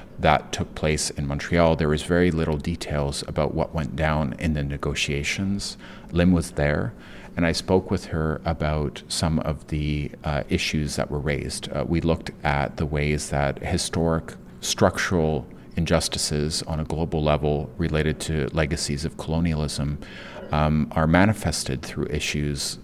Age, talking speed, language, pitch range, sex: 40-59, 150 wpm, English, 70-80 Hz, male